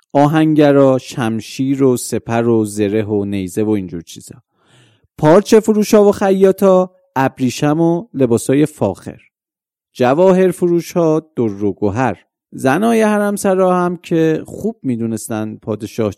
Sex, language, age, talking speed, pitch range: male, Persian, 40-59, 115 wpm, 115-180 Hz